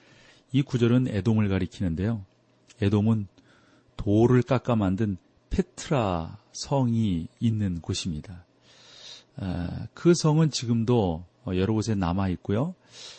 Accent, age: native, 40-59